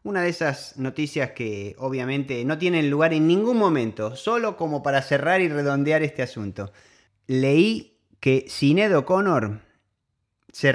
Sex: male